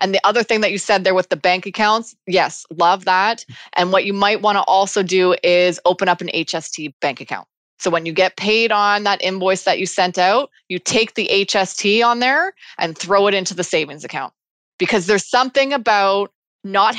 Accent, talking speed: American, 210 wpm